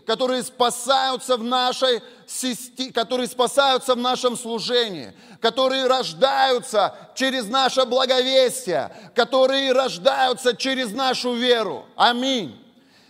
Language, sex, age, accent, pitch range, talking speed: Russian, male, 30-49, native, 225-260 Hz, 90 wpm